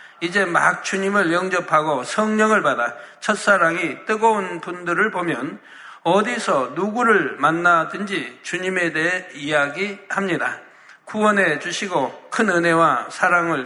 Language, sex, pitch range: Korean, male, 165-200 Hz